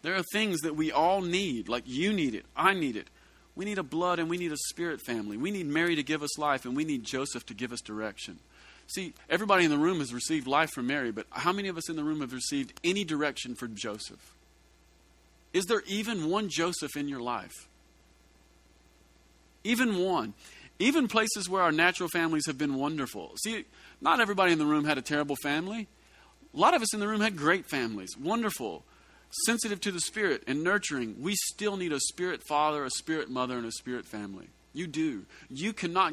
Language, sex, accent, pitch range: English, male, American, 120-175 Hz